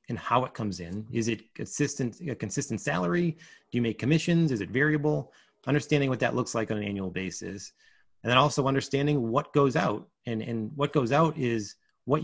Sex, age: male, 30-49